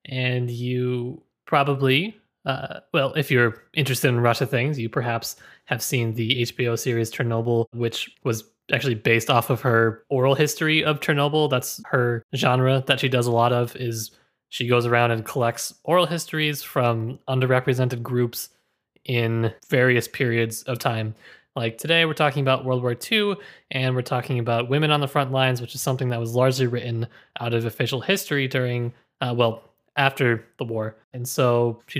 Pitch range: 120-145 Hz